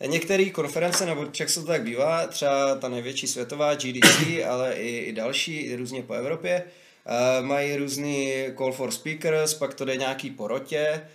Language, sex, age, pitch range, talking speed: Czech, male, 20-39, 120-145 Hz, 170 wpm